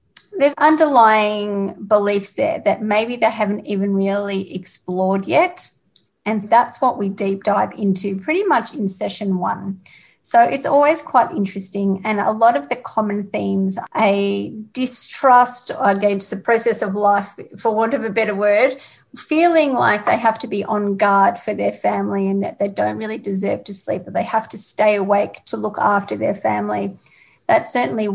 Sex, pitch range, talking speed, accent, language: female, 200-240 Hz, 175 wpm, Australian, English